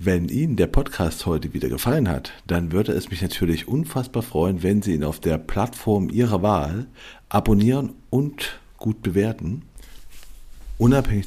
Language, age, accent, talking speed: German, 50-69, German, 150 wpm